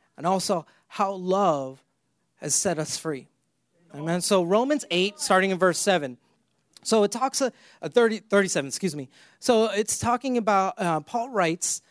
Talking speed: 160 wpm